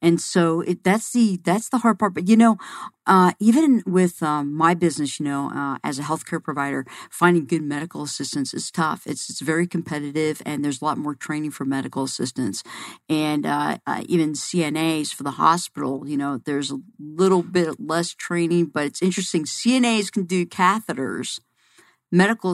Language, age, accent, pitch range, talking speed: English, 50-69, American, 150-185 Hz, 180 wpm